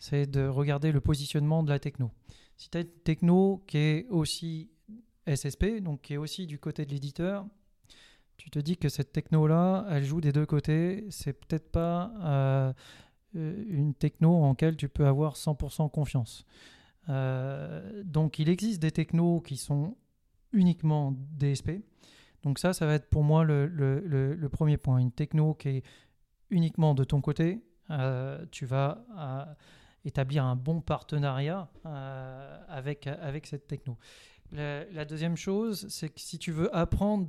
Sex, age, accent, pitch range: male, 40-59, French, 135-160 Hz